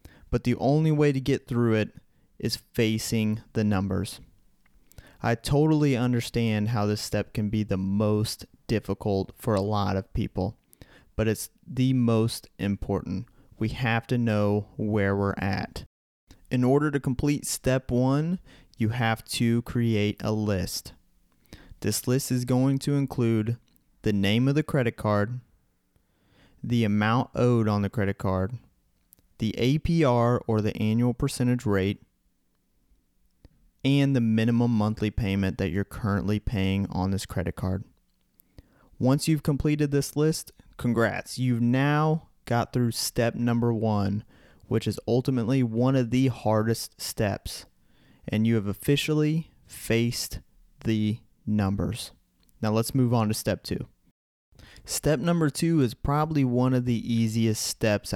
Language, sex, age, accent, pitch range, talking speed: English, male, 30-49, American, 105-125 Hz, 140 wpm